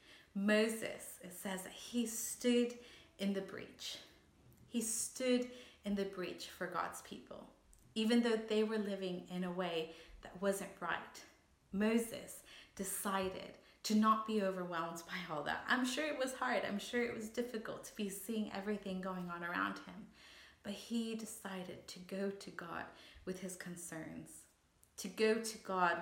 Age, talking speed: 30-49, 160 wpm